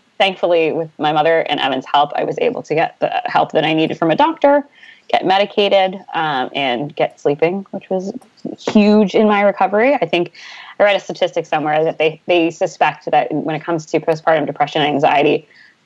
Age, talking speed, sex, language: 20-39, 195 wpm, female, English